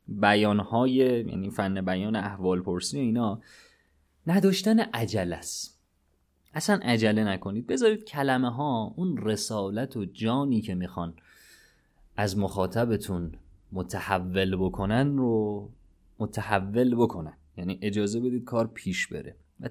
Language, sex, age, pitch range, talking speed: Persian, male, 30-49, 90-125 Hz, 105 wpm